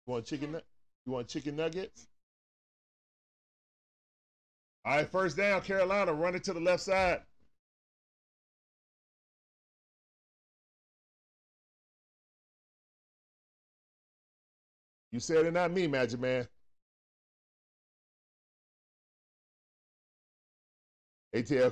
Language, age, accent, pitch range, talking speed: English, 40-59, American, 120-195 Hz, 70 wpm